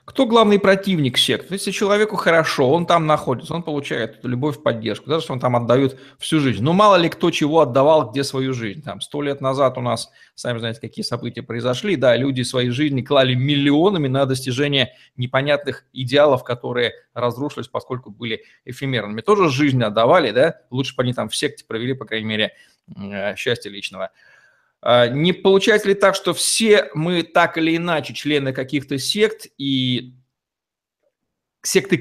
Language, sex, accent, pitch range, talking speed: Russian, male, native, 125-165 Hz, 165 wpm